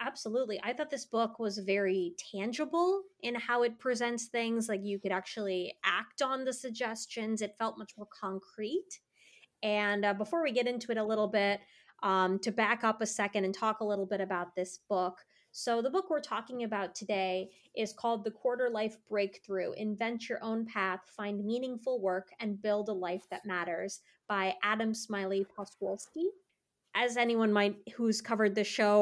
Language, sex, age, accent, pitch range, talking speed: English, female, 20-39, American, 200-240 Hz, 180 wpm